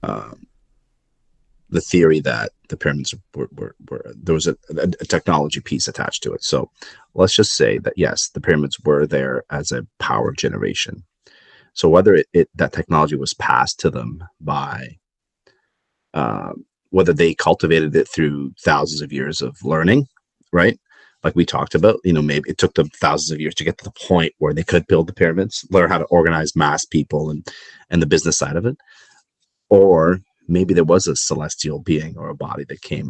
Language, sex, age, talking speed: English, male, 30-49, 190 wpm